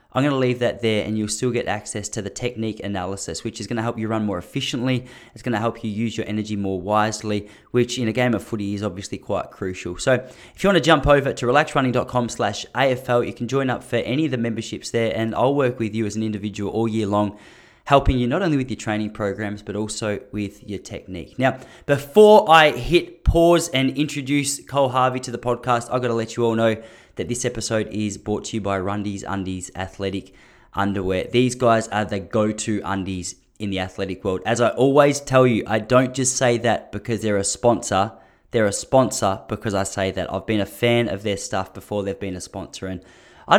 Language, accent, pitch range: English, Australian, 100-125 Hz